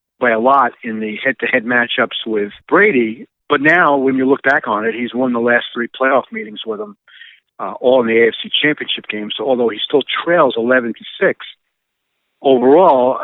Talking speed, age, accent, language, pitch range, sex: 190 wpm, 50-69, American, English, 110-130 Hz, male